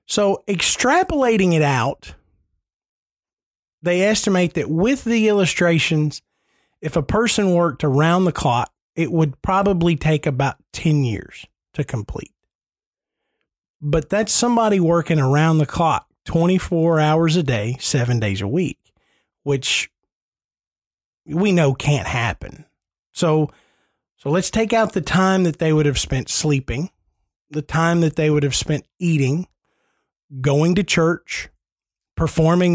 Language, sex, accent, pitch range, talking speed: English, male, American, 135-170 Hz, 130 wpm